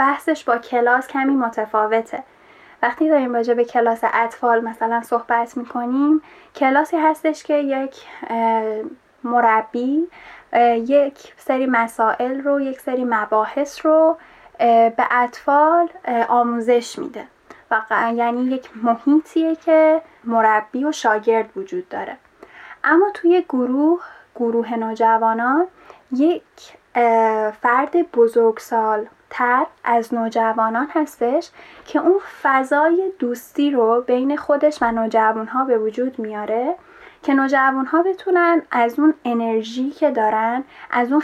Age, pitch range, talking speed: 10-29, 230-300 Hz, 110 wpm